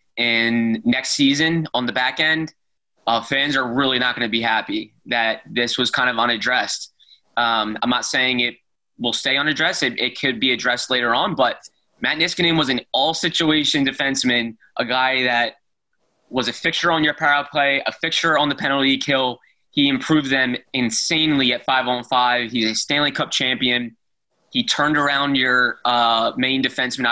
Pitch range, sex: 125-155 Hz, male